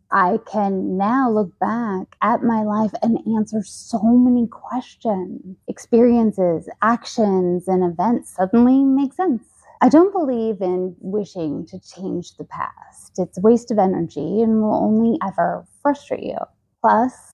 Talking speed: 140 wpm